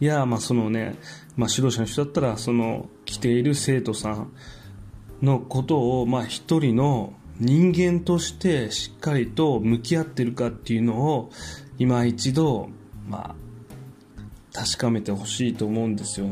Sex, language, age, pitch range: male, Japanese, 20-39, 110-130 Hz